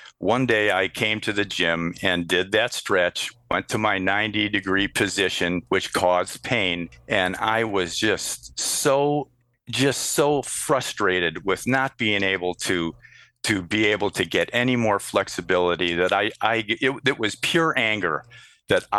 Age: 50-69